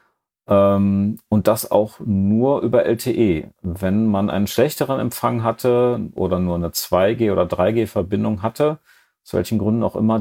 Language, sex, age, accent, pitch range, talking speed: German, male, 40-59, German, 95-115 Hz, 140 wpm